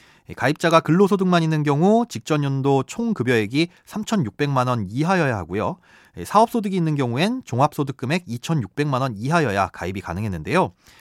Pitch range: 120-190 Hz